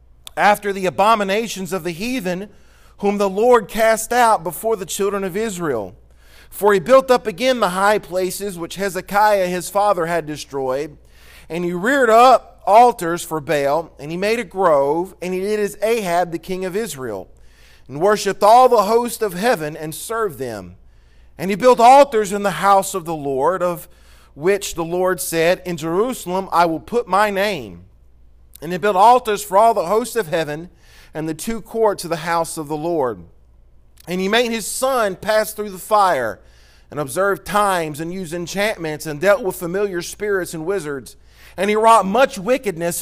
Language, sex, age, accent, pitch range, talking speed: English, male, 40-59, American, 165-210 Hz, 180 wpm